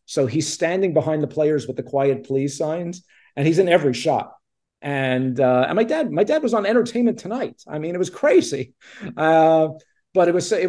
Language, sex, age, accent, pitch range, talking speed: English, male, 50-69, American, 120-145 Hz, 210 wpm